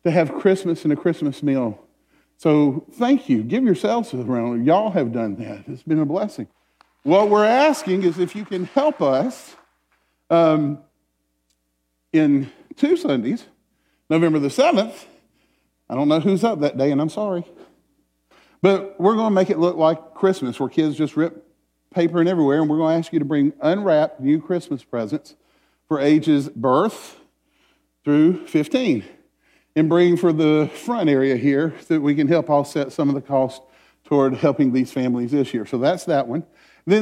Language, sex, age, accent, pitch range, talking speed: English, male, 50-69, American, 140-185 Hz, 175 wpm